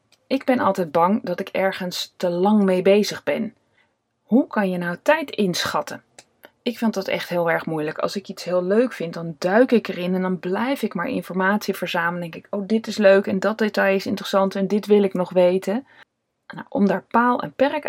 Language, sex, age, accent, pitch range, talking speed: Dutch, female, 20-39, Dutch, 180-235 Hz, 215 wpm